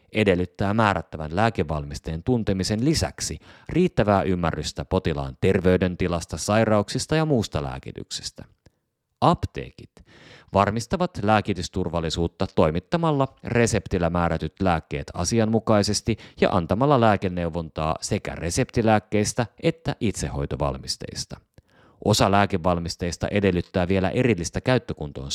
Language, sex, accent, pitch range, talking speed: Finnish, male, native, 85-110 Hz, 80 wpm